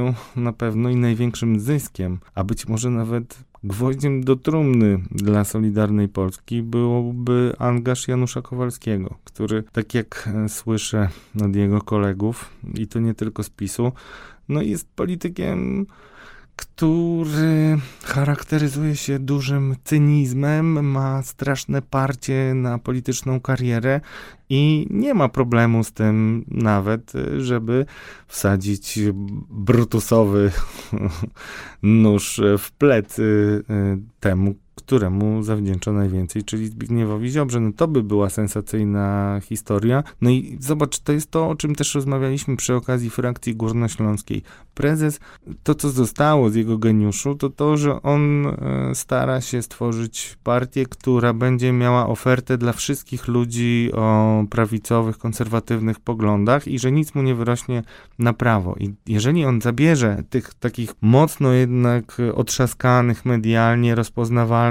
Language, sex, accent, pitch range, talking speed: Polish, male, native, 110-135 Hz, 120 wpm